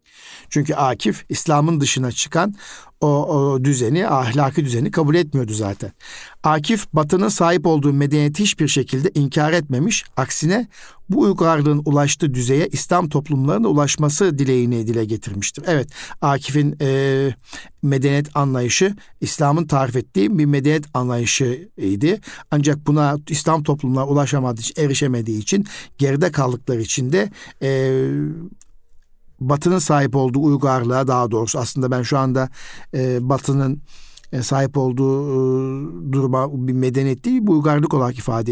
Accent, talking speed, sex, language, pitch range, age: native, 125 wpm, male, Turkish, 130-155 Hz, 50-69